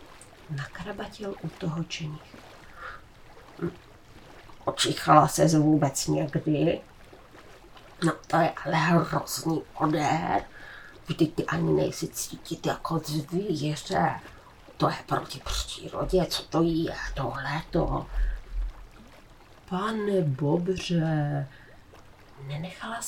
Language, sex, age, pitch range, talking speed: Czech, female, 30-49, 155-195 Hz, 85 wpm